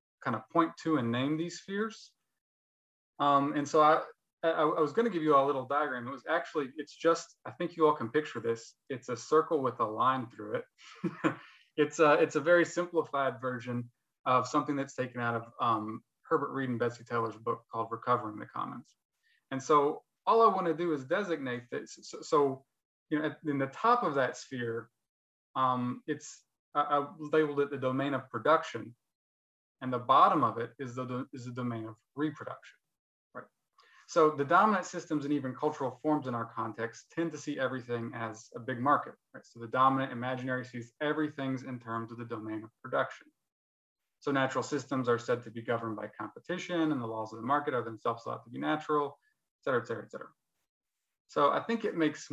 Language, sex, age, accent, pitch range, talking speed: English, male, 20-39, American, 120-155 Hz, 200 wpm